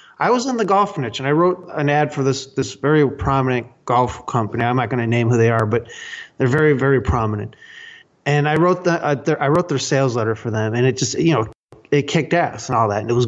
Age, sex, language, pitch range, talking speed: 30-49, male, English, 125-170 Hz, 260 wpm